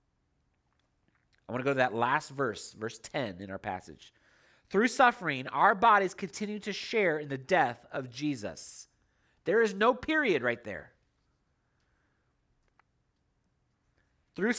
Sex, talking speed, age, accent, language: male, 130 wpm, 30-49, American, English